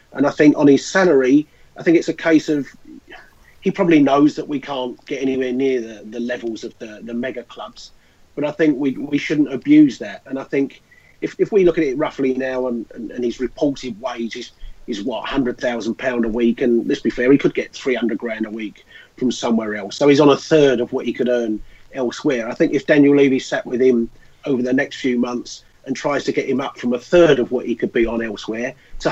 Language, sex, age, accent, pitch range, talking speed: English, male, 30-49, British, 120-145 Hz, 240 wpm